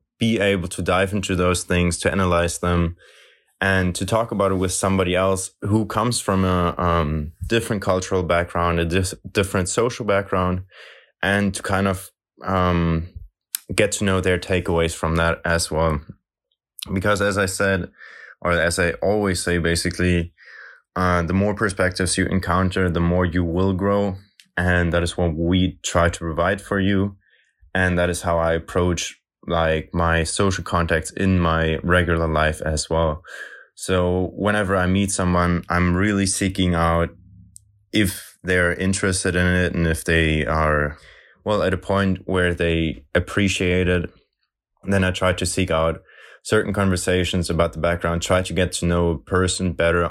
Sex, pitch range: male, 85-95 Hz